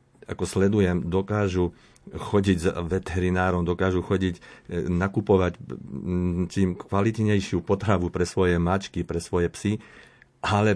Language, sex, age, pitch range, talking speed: Slovak, male, 50-69, 85-100 Hz, 105 wpm